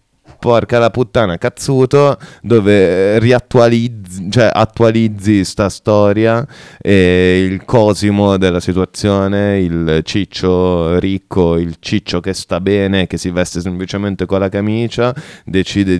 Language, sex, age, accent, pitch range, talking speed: Italian, male, 30-49, native, 90-105 Hz, 115 wpm